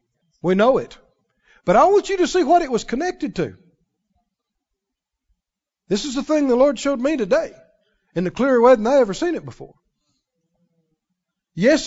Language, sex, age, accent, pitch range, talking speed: English, male, 50-69, American, 210-305 Hz, 170 wpm